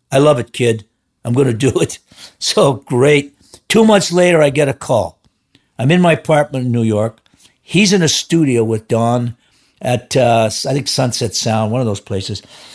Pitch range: 130-195 Hz